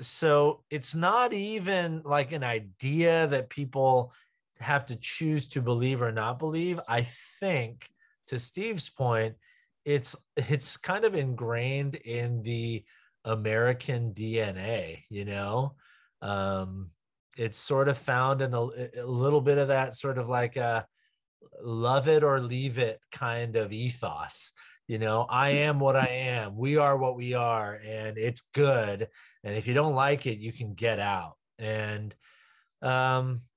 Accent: American